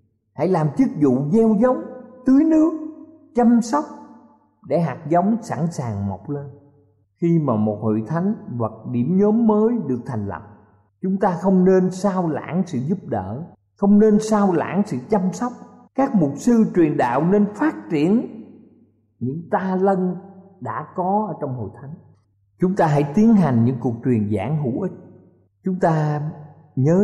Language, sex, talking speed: Vietnamese, male, 170 wpm